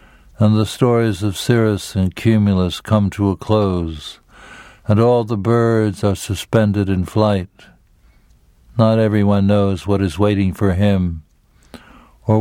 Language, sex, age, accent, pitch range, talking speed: English, male, 60-79, American, 95-110 Hz, 135 wpm